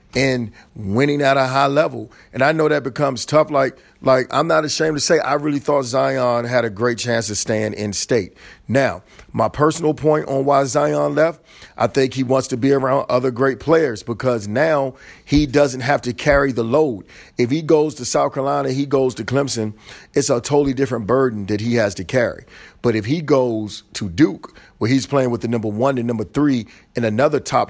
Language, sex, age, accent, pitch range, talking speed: English, male, 40-59, American, 115-145 Hz, 210 wpm